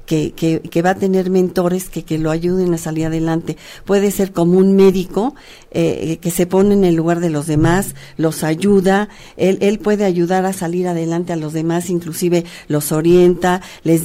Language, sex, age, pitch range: Spanish, female, 50-69, 165-195 Hz